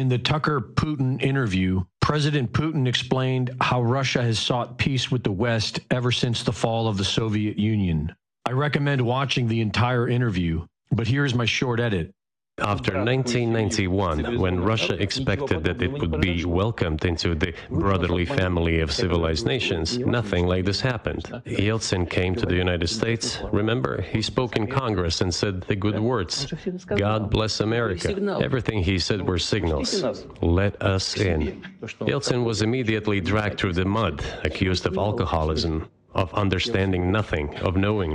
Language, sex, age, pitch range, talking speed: English, male, 40-59, 90-120 Hz, 155 wpm